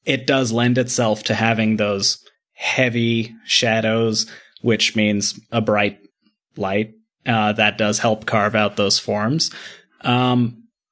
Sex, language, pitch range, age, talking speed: male, German, 105-130 Hz, 30-49, 125 wpm